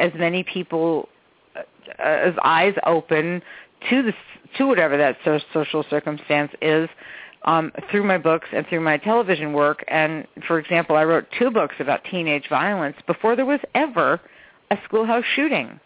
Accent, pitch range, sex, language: American, 150-200 Hz, female, English